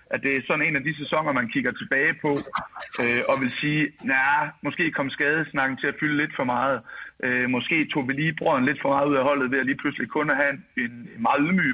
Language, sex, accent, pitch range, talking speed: Danish, male, native, 130-150 Hz, 245 wpm